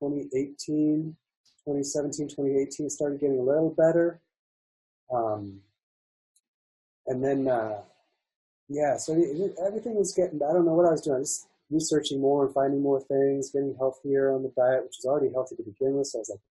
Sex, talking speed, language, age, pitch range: male, 170 wpm, English, 30-49, 120-150 Hz